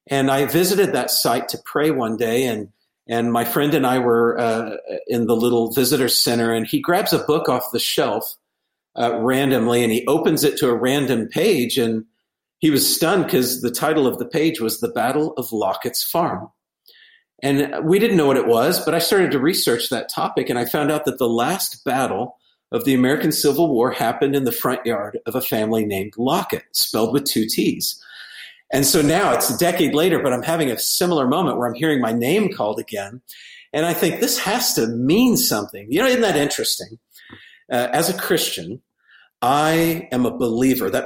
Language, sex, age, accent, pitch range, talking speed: English, male, 50-69, American, 115-150 Hz, 205 wpm